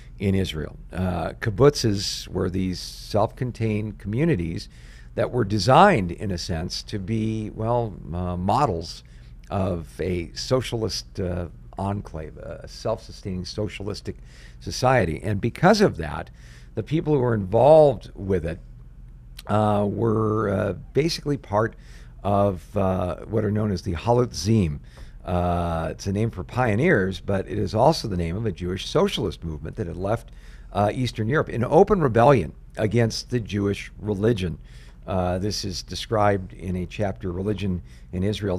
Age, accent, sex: 50-69, American, male